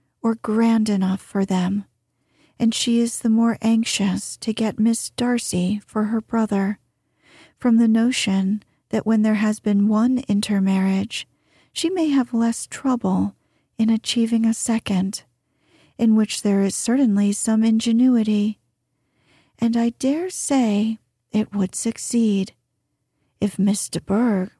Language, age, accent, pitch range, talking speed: English, 40-59, American, 195-235 Hz, 135 wpm